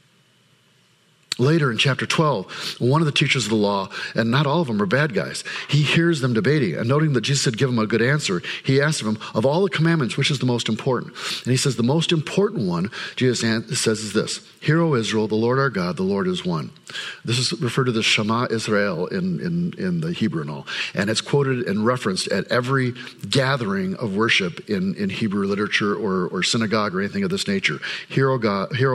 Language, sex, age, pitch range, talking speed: English, male, 50-69, 115-170 Hz, 220 wpm